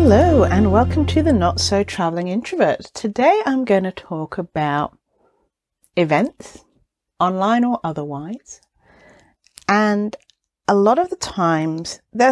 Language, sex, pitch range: English, female, 165-250 Hz